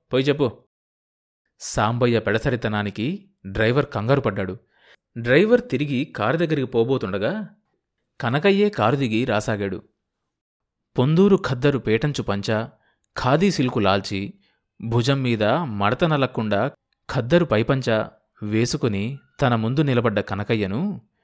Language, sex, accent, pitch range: Telugu, male, native, 105-130 Hz